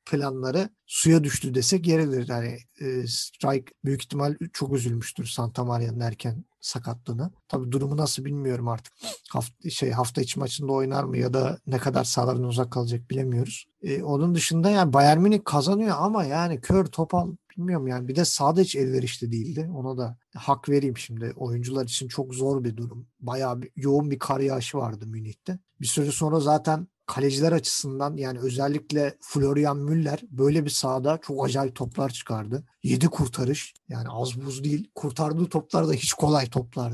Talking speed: 165 wpm